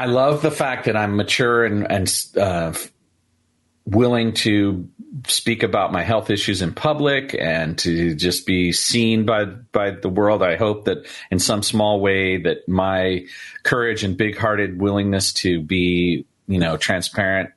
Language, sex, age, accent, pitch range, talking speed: English, male, 40-59, American, 90-110 Hz, 160 wpm